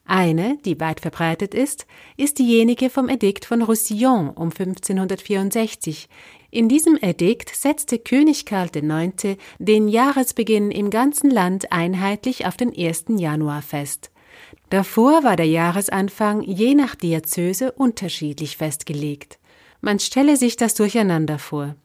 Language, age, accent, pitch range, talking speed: German, 40-59, German, 165-230 Hz, 125 wpm